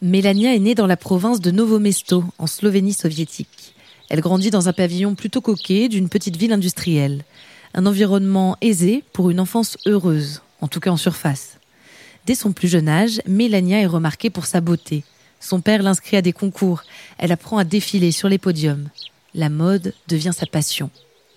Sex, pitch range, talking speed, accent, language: female, 170-210 Hz, 180 wpm, French, French